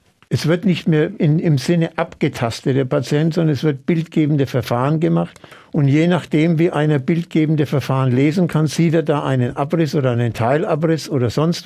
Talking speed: 180 wpm